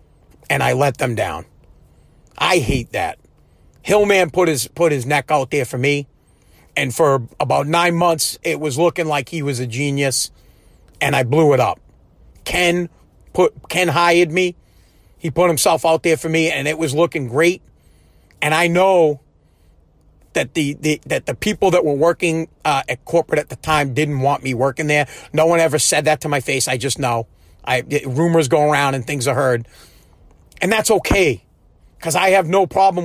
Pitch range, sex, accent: 135-175 Hz, male, American